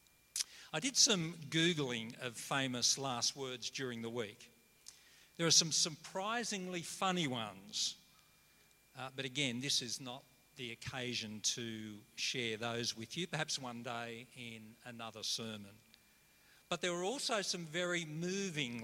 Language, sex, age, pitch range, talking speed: English, male, 50-69, 125-165 Hz, 135 wpm